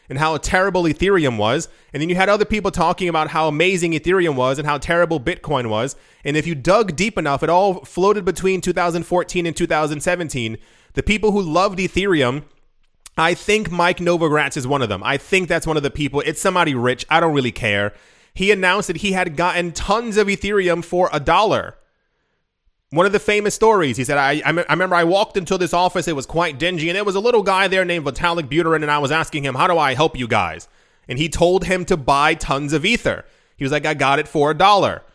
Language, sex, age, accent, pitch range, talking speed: English, male, 30-49, American, 150-190 Hz, 230 wpm